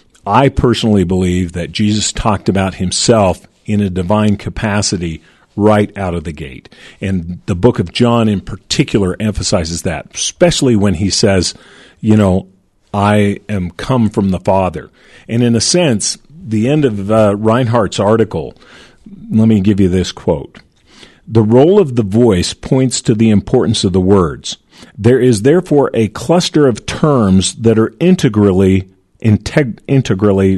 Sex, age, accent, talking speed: male, 50-69, American, 150 wpm